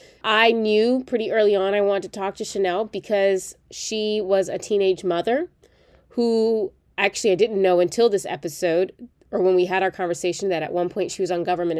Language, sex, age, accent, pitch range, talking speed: English, female, 30-49, American, 180-225 Hz, 200 wpm